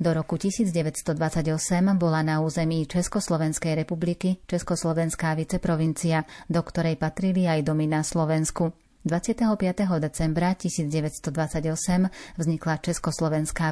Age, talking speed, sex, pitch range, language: 30-49, 95 wpm, female, 160-175 Hz, Slovak